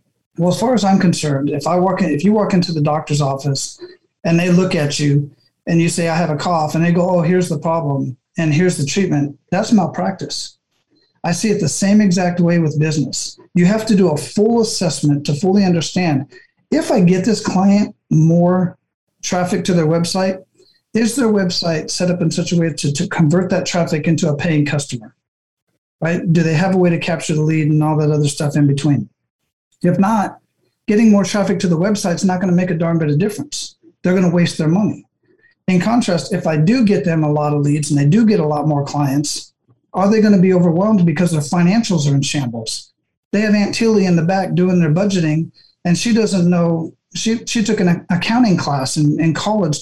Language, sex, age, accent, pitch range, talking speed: English, male, 40-59, American, 155-195 Hz, 220 wpm